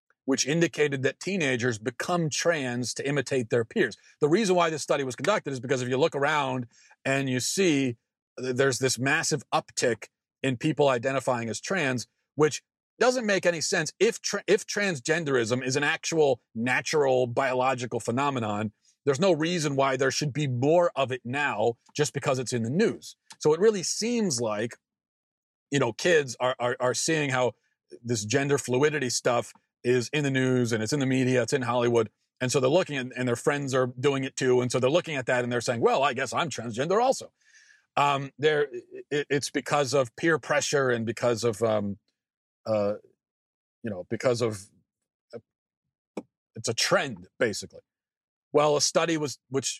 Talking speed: 180 wpm